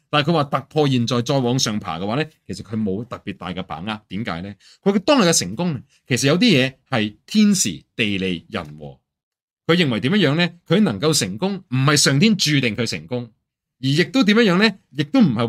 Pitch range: 105-160 Hz